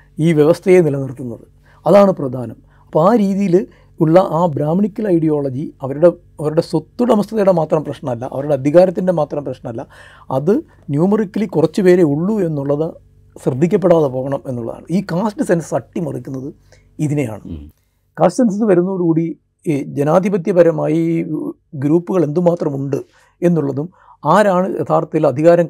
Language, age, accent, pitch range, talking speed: Malayalam, 60-79, native, 140-175 Hz, 105 wpm